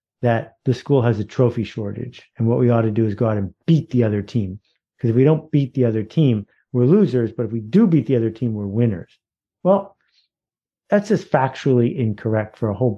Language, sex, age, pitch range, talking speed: English, male, 50-69, 115-175 Hz, 225 wpm